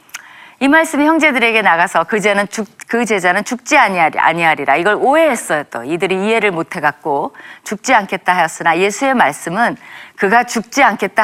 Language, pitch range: Korean, 165-250 Hz